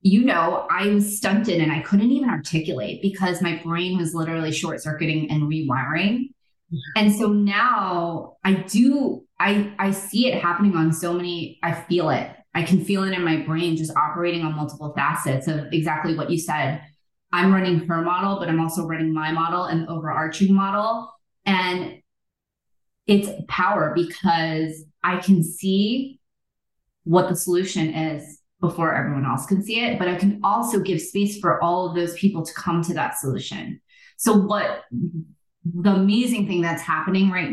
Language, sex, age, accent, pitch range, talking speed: English, female, 20-39, American, 160-195 Hz, 170 wpm